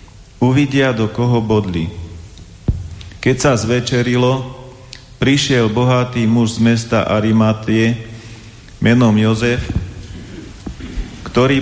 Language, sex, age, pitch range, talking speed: Slovak, male, 40-59, 105-120 Hz, 85 wpm